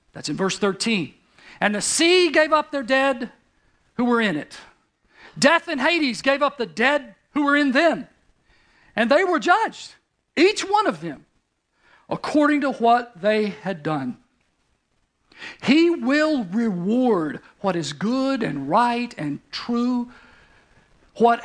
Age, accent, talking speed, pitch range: 50-69, American, 145 wpm, 195-275 Hz